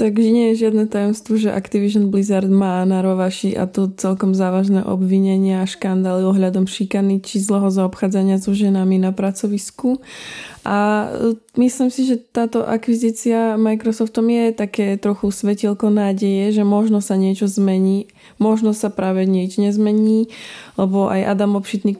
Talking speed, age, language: 145 wpm, 20-39, Slovak